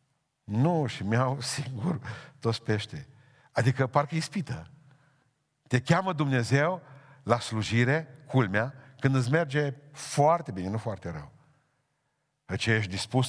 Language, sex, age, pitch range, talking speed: Romanian, male, 50-69, 110-145 Hz, 120 wpm